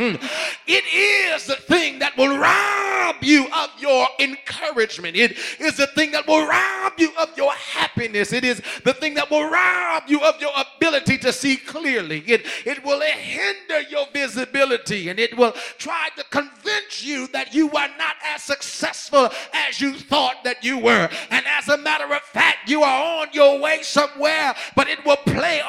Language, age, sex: English, 40-59, male